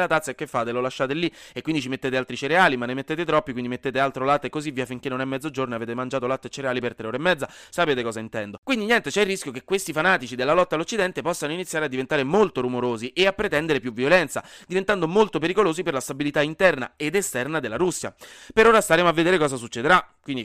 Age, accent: 30-49, native